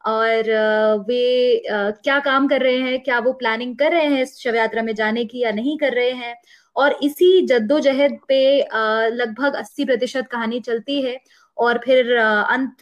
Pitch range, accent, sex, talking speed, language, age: 225-285 Hz, native, female, 170 wpm, Hindi, 20-39